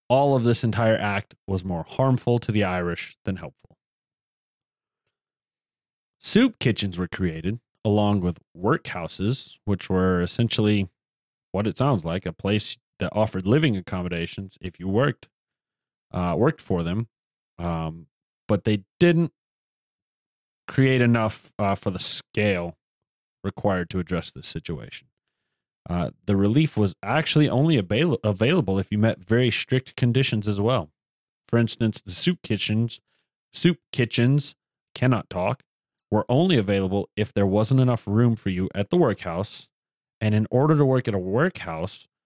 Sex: male